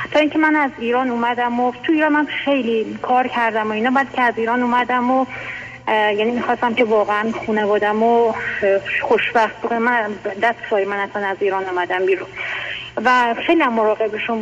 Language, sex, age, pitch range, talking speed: Persian, female, 30-49, 210-260 Hz, 170 wpm